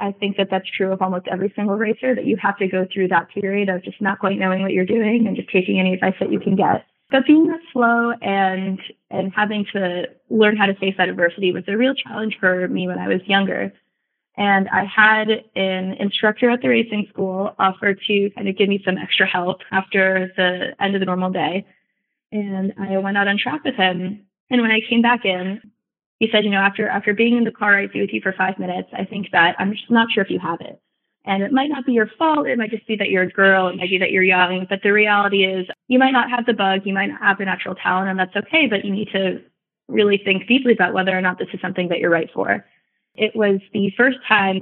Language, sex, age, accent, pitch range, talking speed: English, female, 20-39, American, 185-215 Hz, 255 wpm